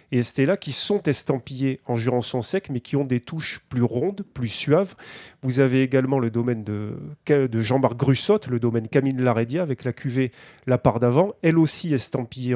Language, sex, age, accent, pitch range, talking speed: French, male, 30-49, French, 125-150 Hz, 180 wpm